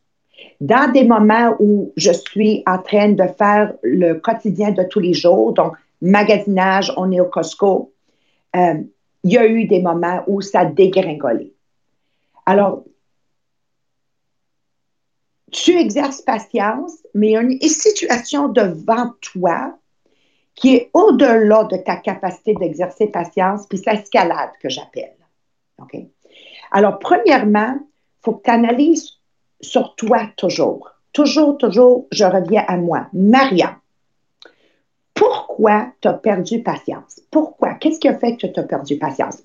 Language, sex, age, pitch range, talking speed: English, female, 50-69, 185-260 Hz, 135 wpm